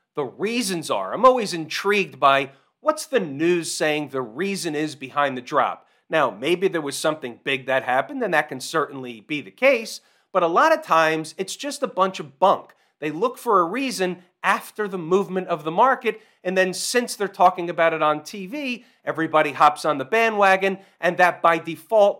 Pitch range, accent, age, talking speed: 155-225 Hz, American, 40-59, 195 wpm